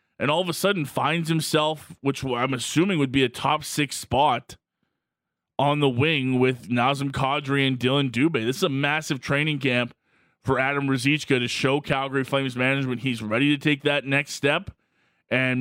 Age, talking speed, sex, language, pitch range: 20-39, 180 wpm, male, English, 130-150 Hz